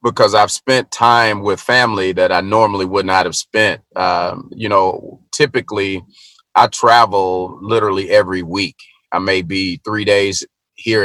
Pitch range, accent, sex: 90-110 Hz, American, male